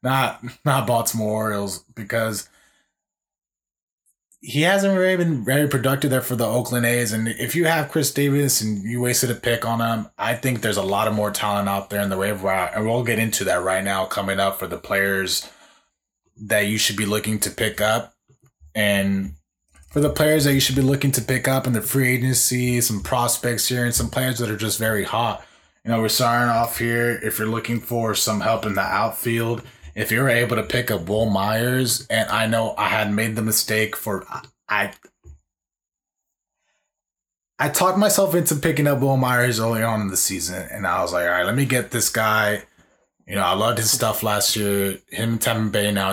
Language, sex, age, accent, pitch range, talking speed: English, male, 20-39, American, 105-125 Hz, 210 wpm